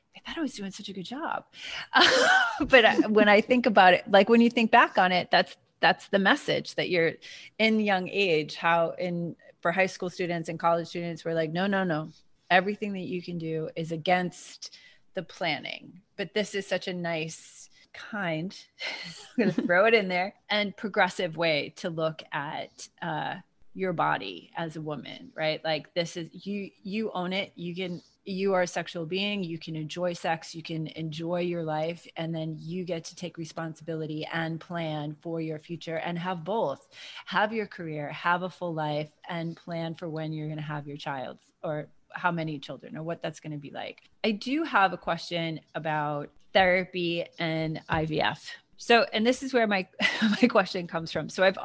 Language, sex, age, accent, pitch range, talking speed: English, female, 30-49, American, 160-195 Hz, 195 wpm